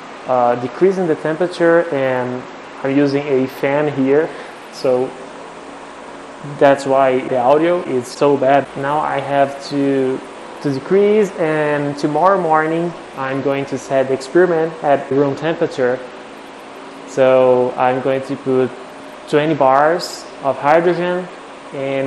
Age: 20-39